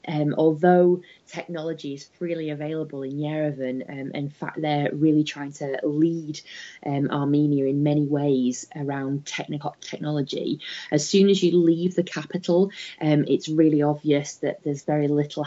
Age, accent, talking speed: 20-39, British, 150 wpm